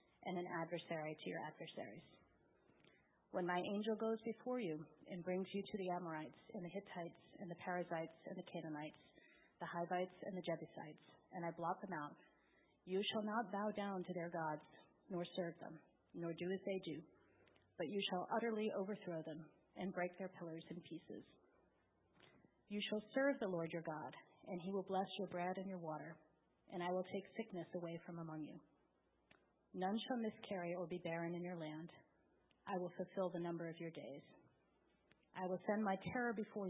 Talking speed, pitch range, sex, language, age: 185 wpm, 170-195 Hz, female, English, 40-59